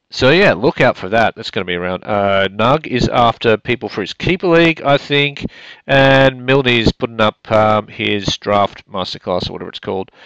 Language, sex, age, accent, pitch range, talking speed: English, male, 40-59, Australian, 95-130 Hz, 200 wpm